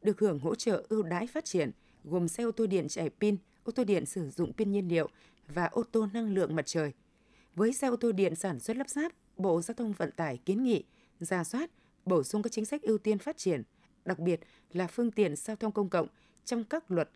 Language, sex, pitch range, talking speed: Vietnamese, female, 175-230 Hz, 240 wpm